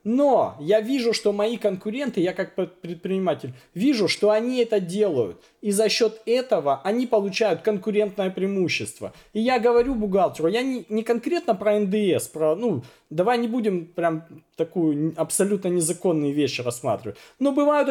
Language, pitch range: Russian, 175-235 Hz